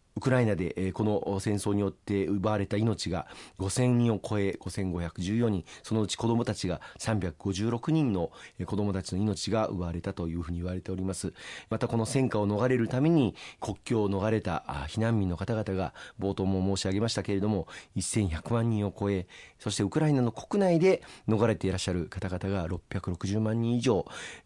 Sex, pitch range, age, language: male, 95-115 Hz, 40-59, Japanese